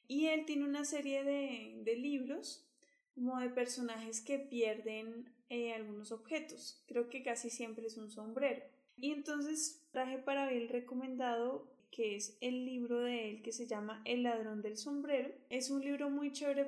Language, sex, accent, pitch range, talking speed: Spanish, female, Colombian, 230-275 Hz, 175 wpm